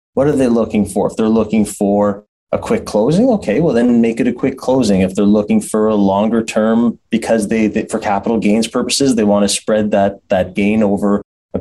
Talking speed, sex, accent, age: 220 wpm, male, American, 20-39